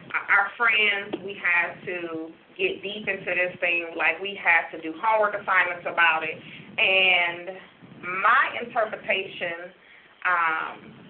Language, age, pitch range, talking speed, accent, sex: English, 30-49, 170-210 Hz, 125 wpm, American, female